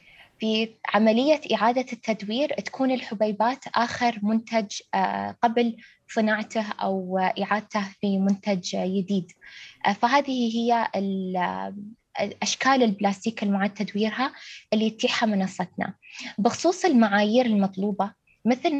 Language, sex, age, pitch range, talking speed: Arabic, female, 20-39, 210-260 Hz, 90 wpm